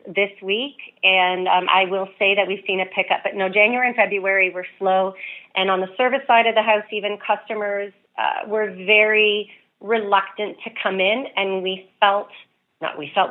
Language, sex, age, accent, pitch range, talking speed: English, female, 40-59, American, 185-210 Hz, 190 wpm